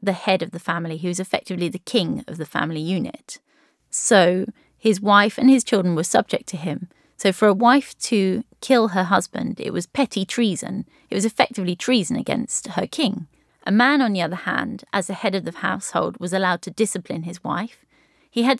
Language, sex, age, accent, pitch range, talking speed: English, female, 30-49, British, 180-230 Hz, 205 wpm